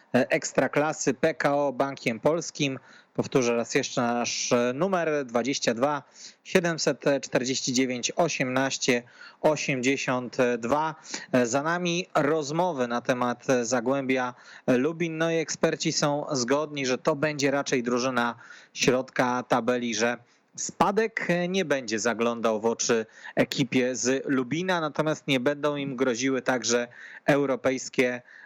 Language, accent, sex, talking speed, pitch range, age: Polish, native, male, 110 wpm, 125-150 Hz, 30-49